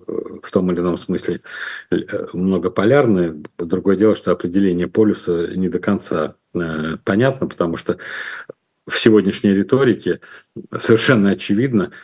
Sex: male